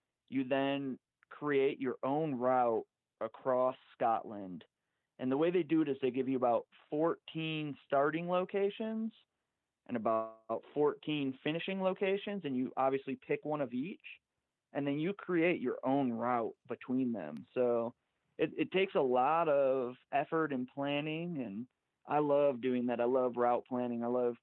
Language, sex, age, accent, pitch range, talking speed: English, male, 30-49, American, 120-145 Hz, 155 wpm